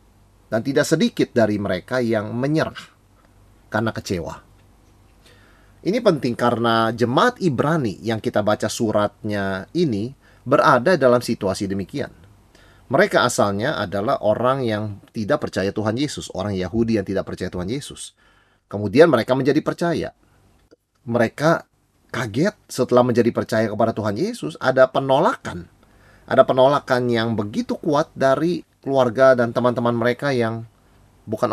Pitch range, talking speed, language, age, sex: 105-140 Hz, 125 wpm, Indonesian, 30-49, male